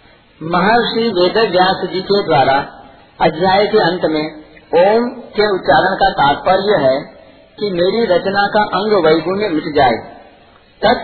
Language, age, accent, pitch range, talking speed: Hindi, 50-69, native, 165-210 Hz, 140 wpm